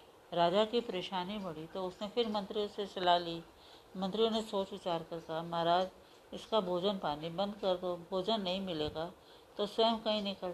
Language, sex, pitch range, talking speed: Hindi, female, 170-205 Hz, 175 wpm